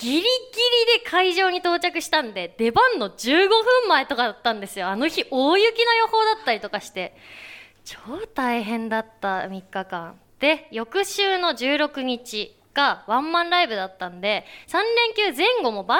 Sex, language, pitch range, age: female, Japanese, 230-390 Hz, 20-39